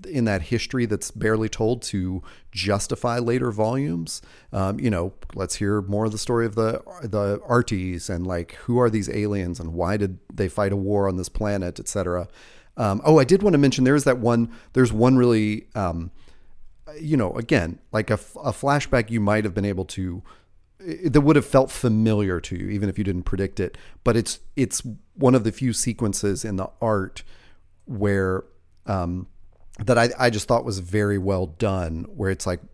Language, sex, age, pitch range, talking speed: English, male, 40-59, 95-115 Hz, 190 wpm